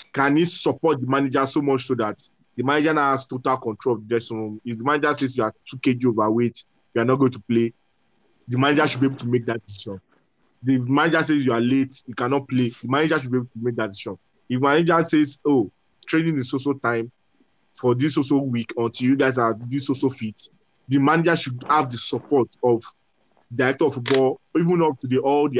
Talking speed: 230 wpm